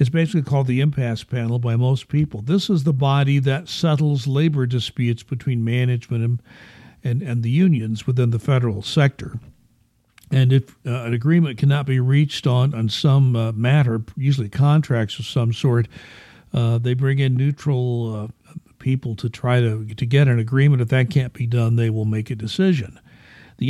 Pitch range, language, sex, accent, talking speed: 120-145 Hz, English, male, American, 180 wpm